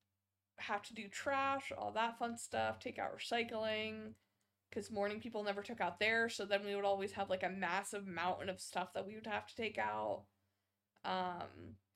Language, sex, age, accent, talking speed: English, female, 20-39, American, 190 wpm